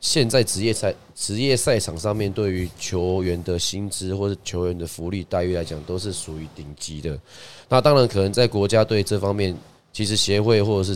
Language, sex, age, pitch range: Chinese, male, 20-39, 85-110 Hz